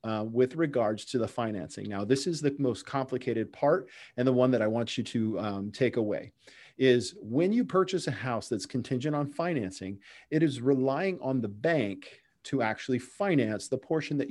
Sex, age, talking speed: male, 40-59, 195 wpm